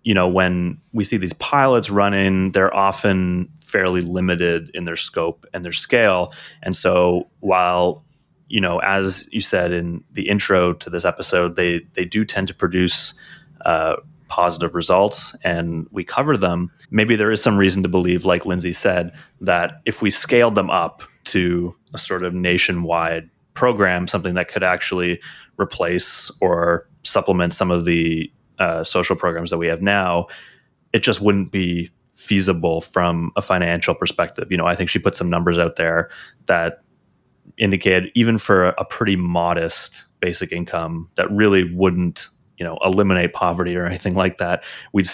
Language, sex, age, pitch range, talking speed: English, male, 30-49, 85-95 Hz, 165 wpm